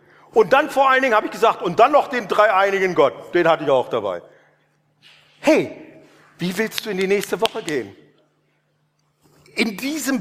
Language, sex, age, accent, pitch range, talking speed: German, male, 50-69, German, 170-230 Hz, 175 wpm